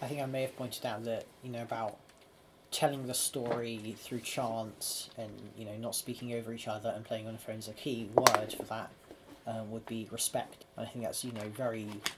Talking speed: 225 wpm